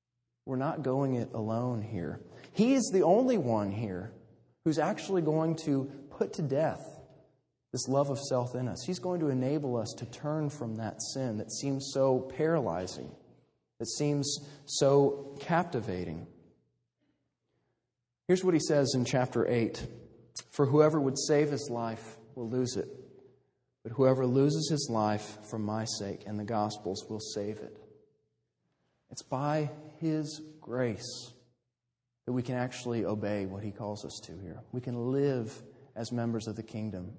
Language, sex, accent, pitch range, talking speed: English, male, American, 115-155 Hz, 155 wpm